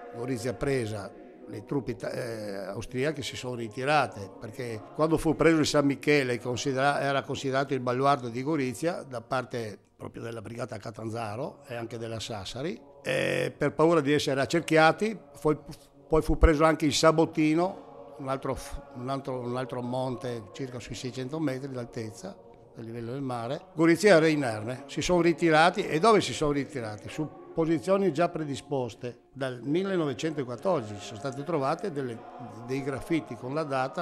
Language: Italian